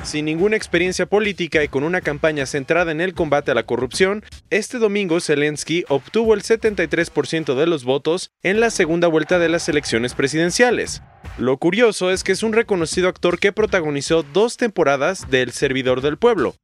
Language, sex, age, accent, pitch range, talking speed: English, male, 30-49, Mexican, 150-200 Hz, 175 wpm